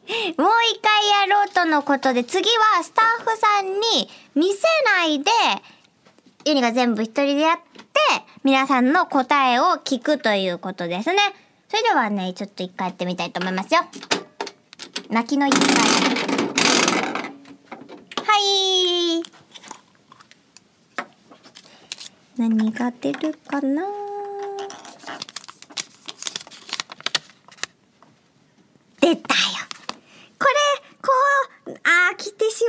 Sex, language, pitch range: male, Japanese, 235-360 Hz